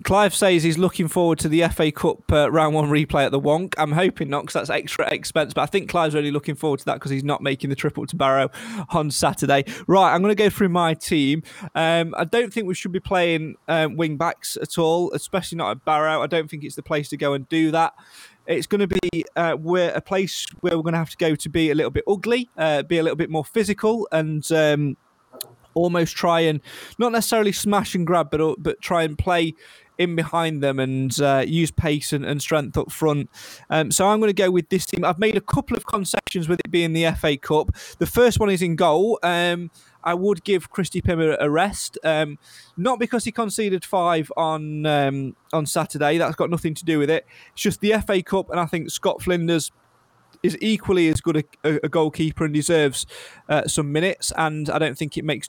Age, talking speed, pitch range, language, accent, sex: 20-39, 230 wpm, 150-180 Hz, English, British, male